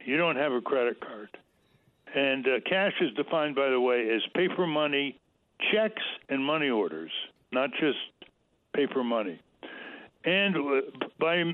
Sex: male